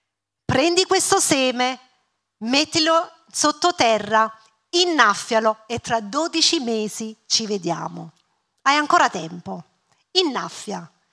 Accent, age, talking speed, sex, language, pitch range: native, 40-59, 85 wpm, female, Italian, 205-300 Hz